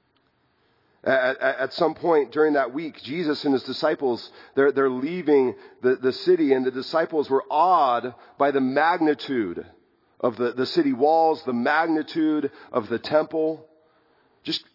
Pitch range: 110-150 Hz